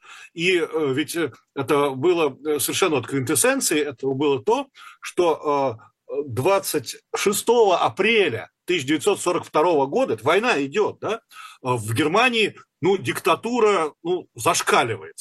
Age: 40-59